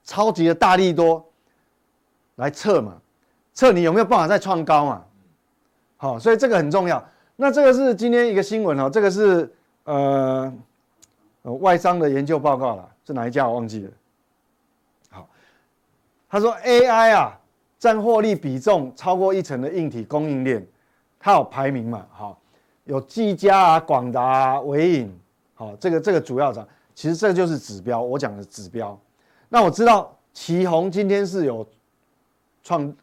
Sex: male